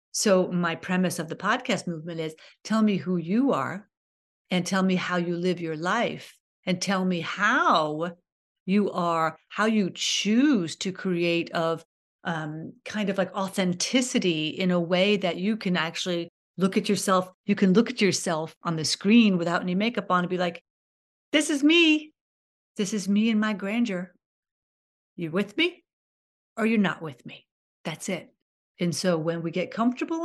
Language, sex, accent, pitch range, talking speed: English, female, American, 175-200 Hz, 175 wpm